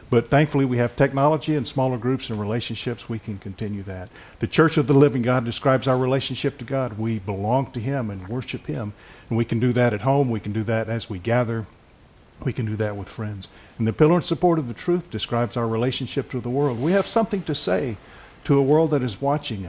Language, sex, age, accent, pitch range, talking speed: English, male, 50-69, American, 110-140 Hz, 235 wpm